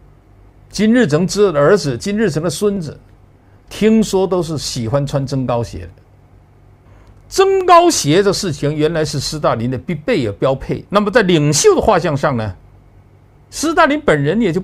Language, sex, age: Chinese, male, 50-69